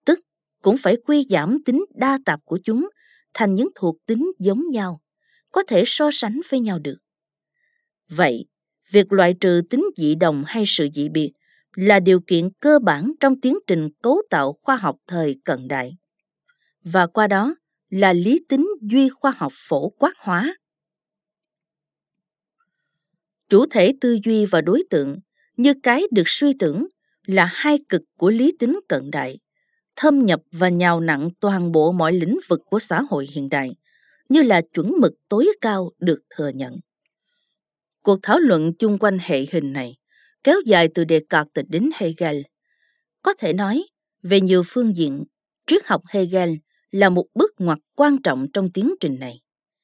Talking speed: 165 wpm